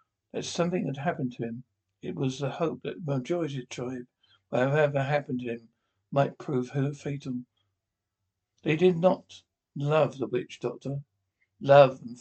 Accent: British